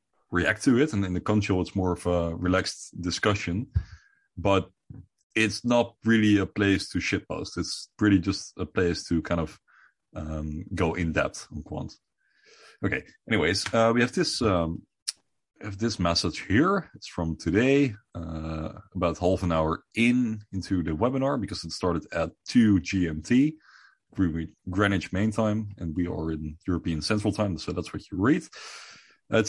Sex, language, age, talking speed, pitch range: male, English, 30-49, 165 wpm, 85-110 Hz